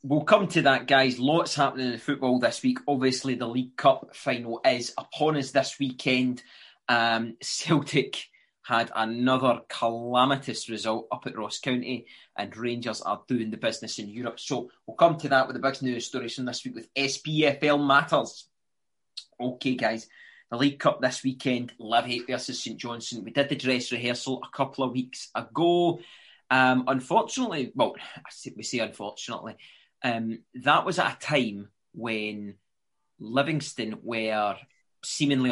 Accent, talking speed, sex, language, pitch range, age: British, 155 wpm, male, English, 120-140 Hz, 20-39